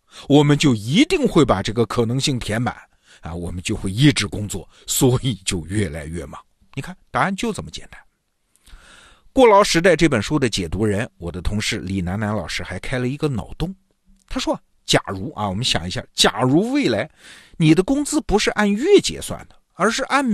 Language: Chinese